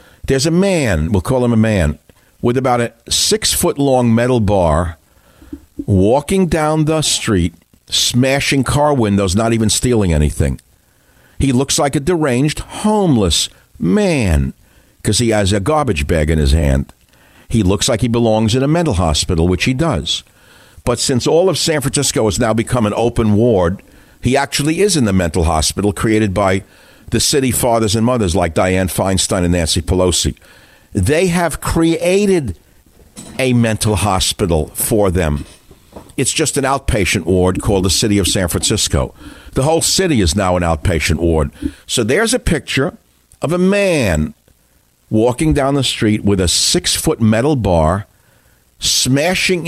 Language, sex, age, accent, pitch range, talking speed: English, male, 60-79, American, 90-135 Hz, 155 wpm